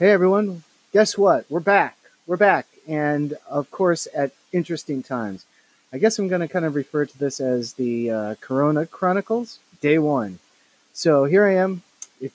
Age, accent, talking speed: 30-49, American, 175 wpm